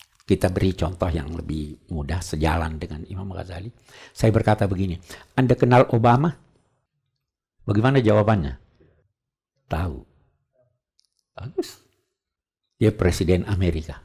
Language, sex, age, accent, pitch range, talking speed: Indonesian, male, 60-79, native, 85-130 Hz, 100 wpm